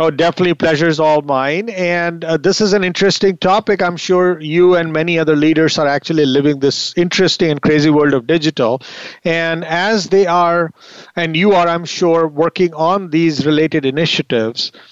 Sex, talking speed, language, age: male, 175 wpm, English, 50-69